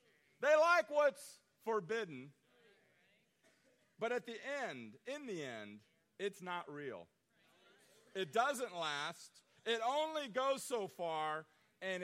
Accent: American